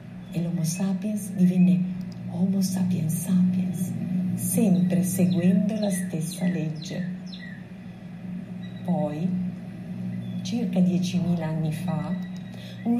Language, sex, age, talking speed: Italian, female, 40-59, 80 wpm